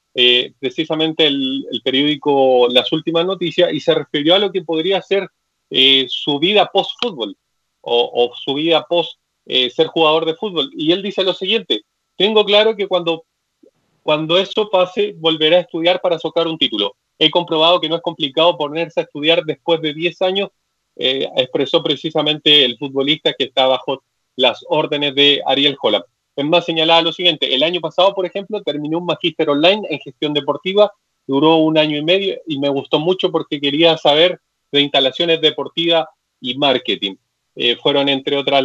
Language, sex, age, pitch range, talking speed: Spanish, male, 30-49, 140-175 Hz, 175 wpm